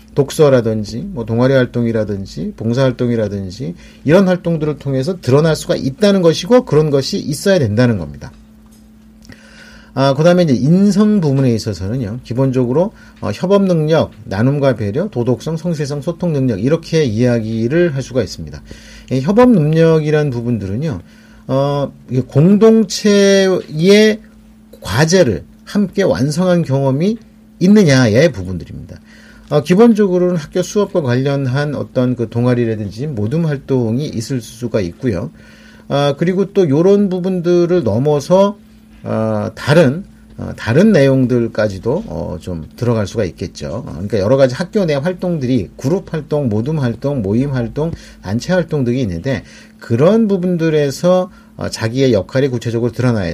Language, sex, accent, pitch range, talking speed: English, male, Korean, 115-180 Hz, 115 wpm